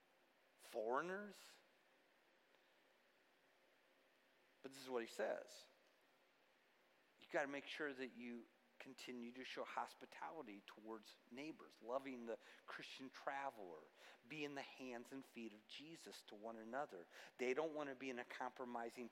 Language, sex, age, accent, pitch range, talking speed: English, male, 50-69, American, 120-160 Hz, 135 wpm